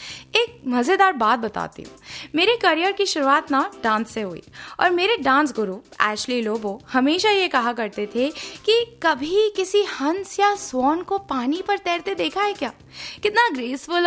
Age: 20-39